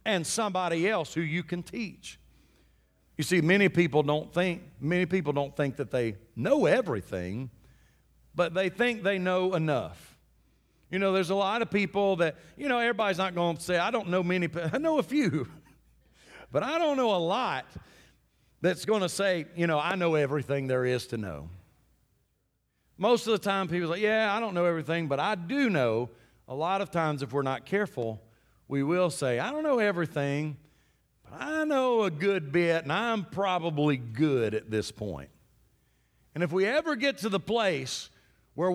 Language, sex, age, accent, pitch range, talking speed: English, male, 50-69, American, 150-215 Hz, 185 wpm